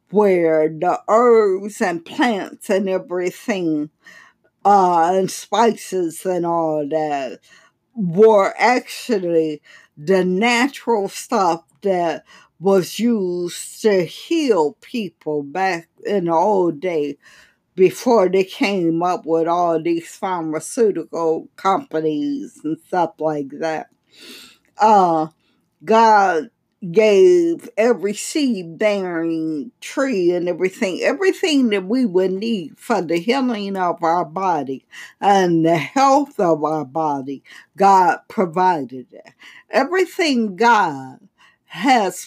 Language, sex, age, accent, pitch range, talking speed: English, female, 50-69, American, 165-225 Hz, 105 wpm